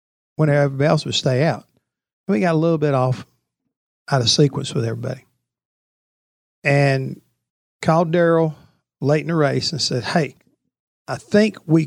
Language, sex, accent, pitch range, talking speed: English, male, American, 130-155 Hz, 150 wpm